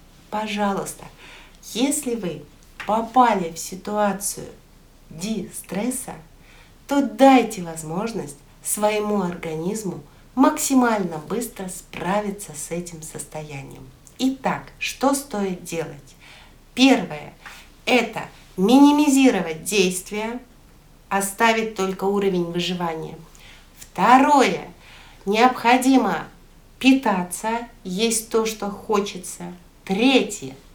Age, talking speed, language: 60-79, 75 wpm, Russian